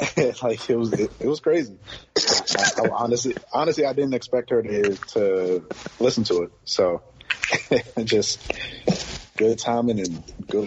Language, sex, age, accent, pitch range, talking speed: English, male, 30-49, American, 95-120 Hz, 150 wpm